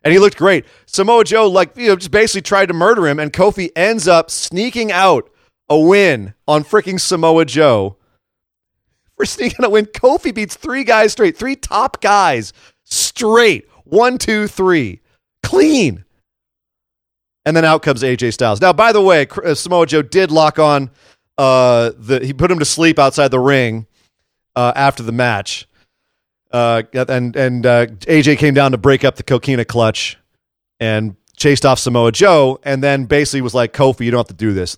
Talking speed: 180 wpm